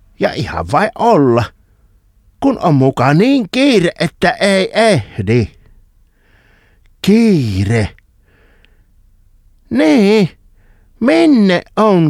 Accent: native